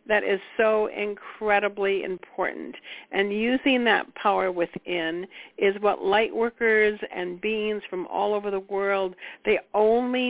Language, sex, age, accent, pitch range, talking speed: English, female, 60-79, American, 190-230 Hz, 130 wpm